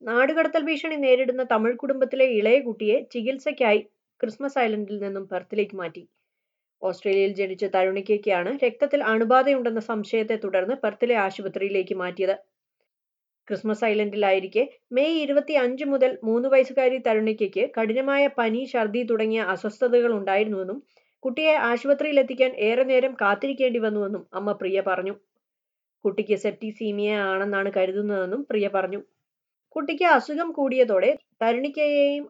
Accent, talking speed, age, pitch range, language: native, 100 wpm, 30-49, 200-260 Hz, Malayalam